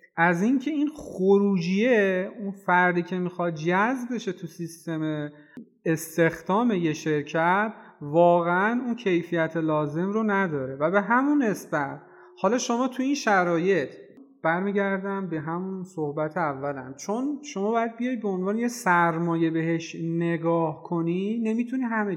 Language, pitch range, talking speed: Persian, 160-215 Hz, 130 wpm